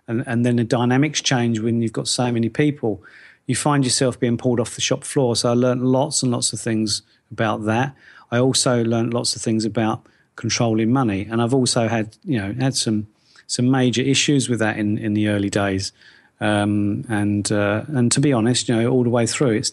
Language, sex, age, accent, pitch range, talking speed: English, male, 40-59, British, 110-130 Hz, 220 wpm